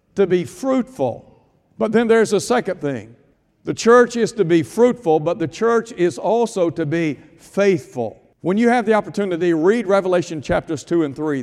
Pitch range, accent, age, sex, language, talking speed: 160-200 Hz, American, 60-79, male, English, 180 wpm